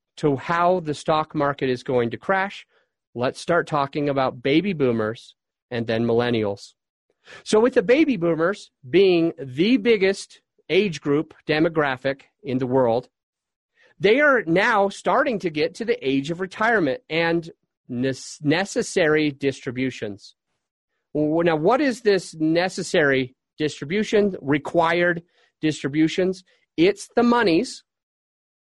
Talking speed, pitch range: 120 wpm, 140-190 Hz